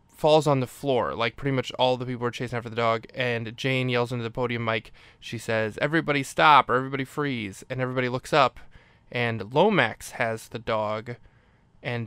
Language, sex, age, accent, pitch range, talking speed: English, male, 20-39, American, 115-130 Hz, 195 wpm